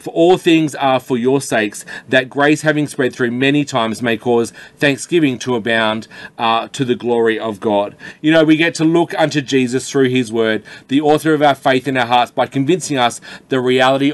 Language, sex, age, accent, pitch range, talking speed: English, male, 30-49, Australian, 115-135 Hz, 205 wpm